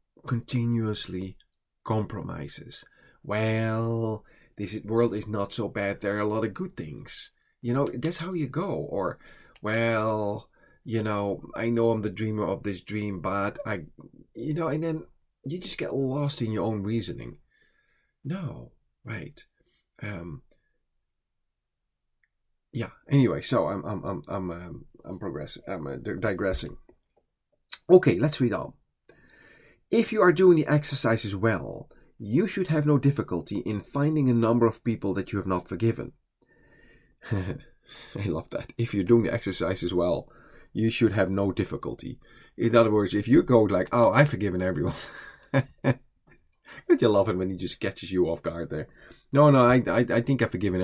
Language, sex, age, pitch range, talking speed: English, male, 30-49, 100-135 Hz, 165 wpm